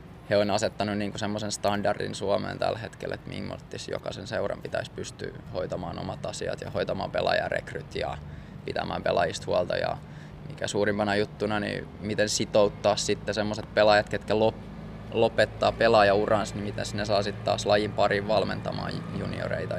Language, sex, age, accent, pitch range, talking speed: Finnish, male, 20-39, native, 100-110 Hz, 150 wpm